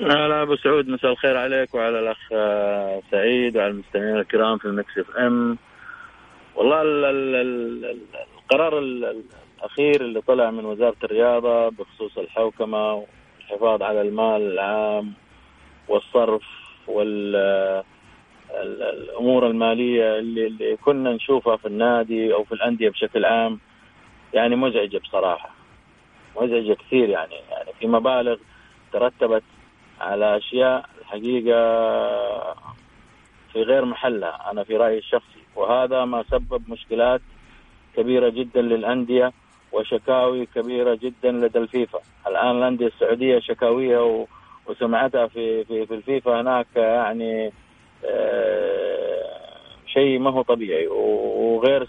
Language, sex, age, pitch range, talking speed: Arabic, male, 30-49, 115-135 Hz, 105 wpm